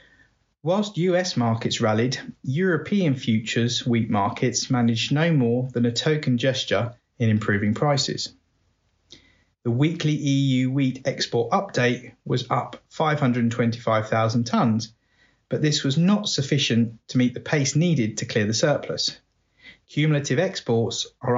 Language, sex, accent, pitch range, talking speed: English, male, British, 115-140 Hz, 125 wpm